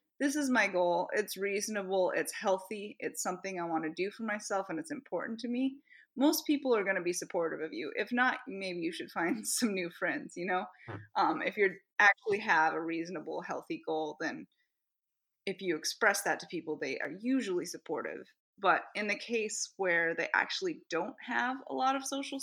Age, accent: 20-39, American